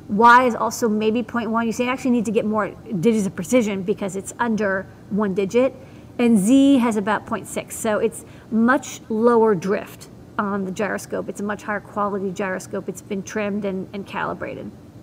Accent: American